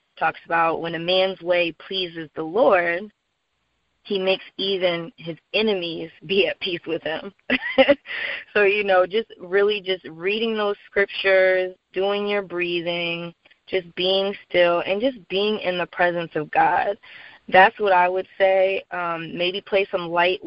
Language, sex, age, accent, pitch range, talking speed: English, female, 20-39, American, 170-195 Hz, 150 wpm